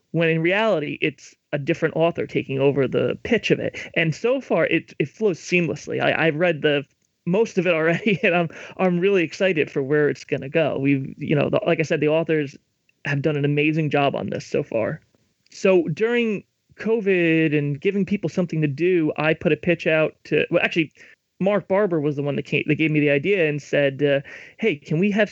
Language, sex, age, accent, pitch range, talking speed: English, male, 30-49, American, 145-185 Hz, 220 wpm